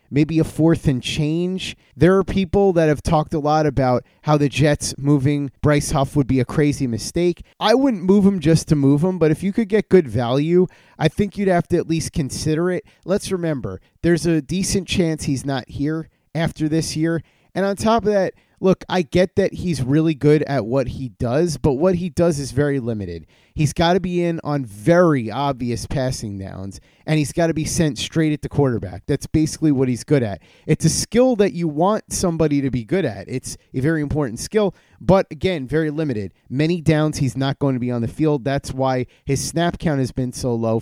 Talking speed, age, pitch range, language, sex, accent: 220 wpm, 30-49, 130-170 Hz, English, male, American